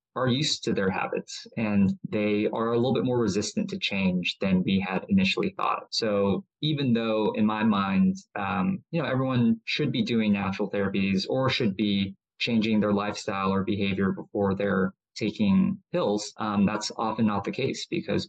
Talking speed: 175 wpm